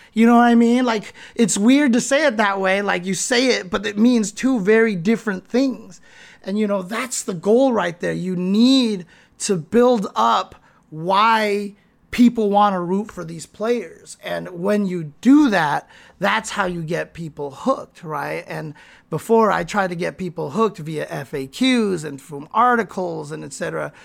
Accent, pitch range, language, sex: American, 185-235 Hz, English, male